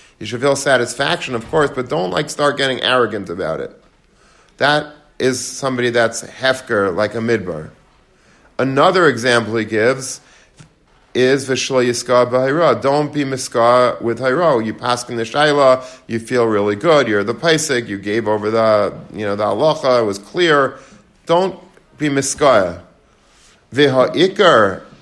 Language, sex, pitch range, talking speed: English, male, 115-140 Hz, 150 wpm